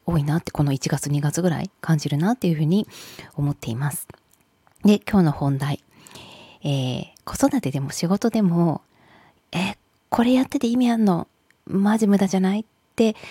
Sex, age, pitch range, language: female, 20-39, 150-210 Hz, Japanese